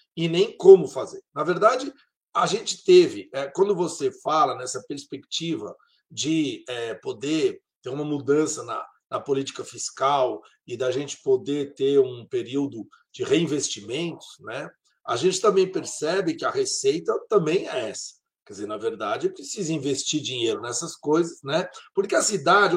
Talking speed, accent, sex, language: 155 wpm, Brazilian, male, English